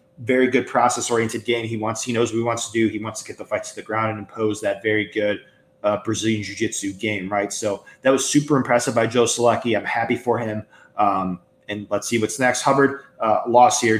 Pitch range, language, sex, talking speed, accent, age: 105-120 Hz, English, male, 235 wpm, American, 20-39